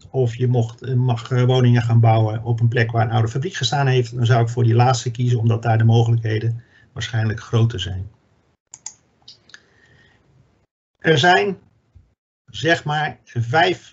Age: 50-69